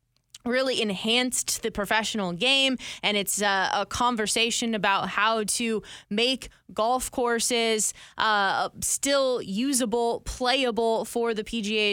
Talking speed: 115 wpm